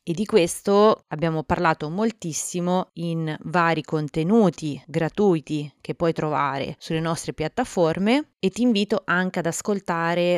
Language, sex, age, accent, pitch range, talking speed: Italian, female, 20-39, native, 155-185 Hz, 125 wpm